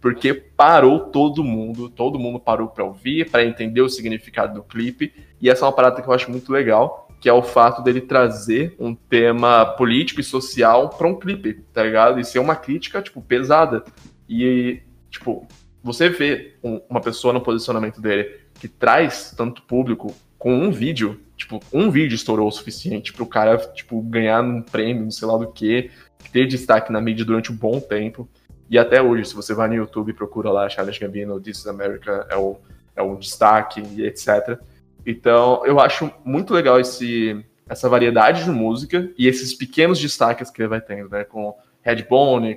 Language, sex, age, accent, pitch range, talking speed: Portuguese, male, 20-39, Brazilian, 110-125 Hz, 185 wpm